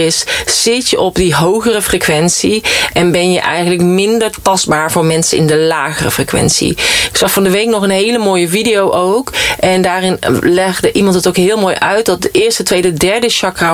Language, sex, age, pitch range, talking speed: Dutch, female, 30-49, 160-195 Hz, 195 wpm